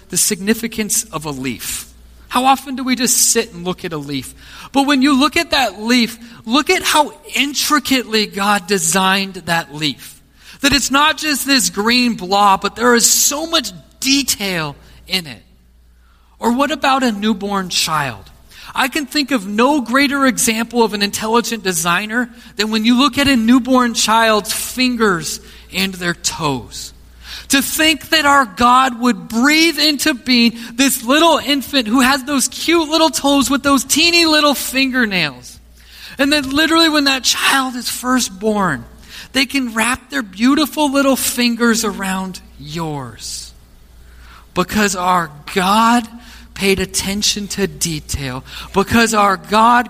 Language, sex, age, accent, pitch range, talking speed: English, male, 40-59, American, 180-265 Hz, 150 wpm